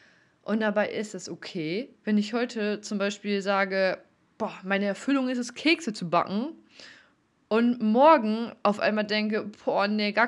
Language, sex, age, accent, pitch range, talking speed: German, female, 20-39, German, 205-240 Hz, 160 wpm